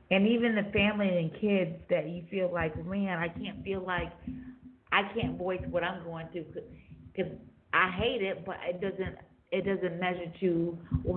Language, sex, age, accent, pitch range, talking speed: English, female, 30-49, American, 155-195 Hz, 190 wpm